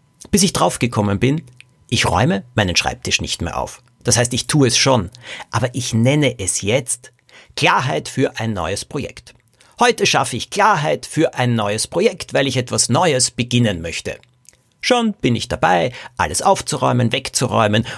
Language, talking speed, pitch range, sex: German, 160 wpm, 115-140 Hz, male